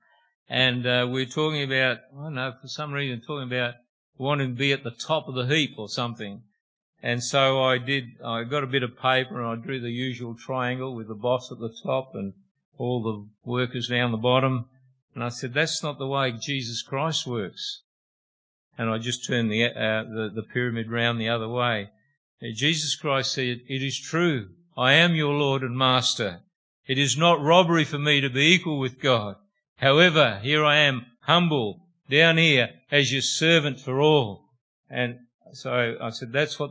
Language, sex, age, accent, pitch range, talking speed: English, male, 50-69, Australian, 120-150 Hz, 190 wpm